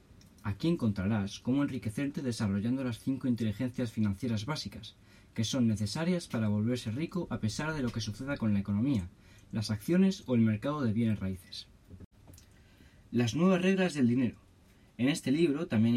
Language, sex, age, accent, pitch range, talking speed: Spanish, male, 20-39, Spanish, 105-140 Hz, 160 wpm